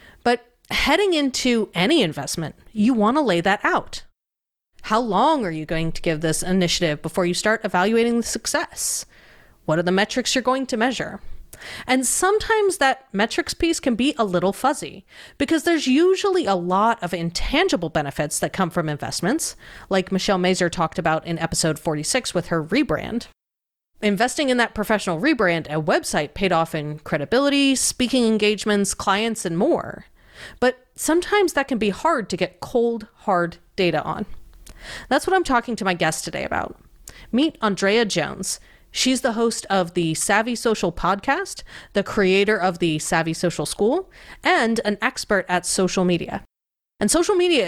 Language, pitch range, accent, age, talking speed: English, 175-255 Hz, American, 30-49, 160 wpm